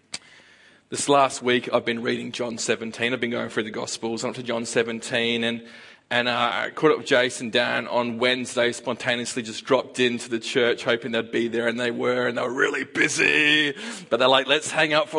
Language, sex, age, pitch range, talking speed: English, male, 30-49, 125-155 Hz, 220 wpm